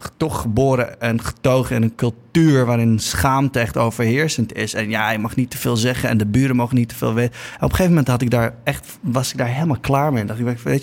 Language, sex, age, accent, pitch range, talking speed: Dutch, male, 20-39, Dutch, 110-130 Hz, 260 wpm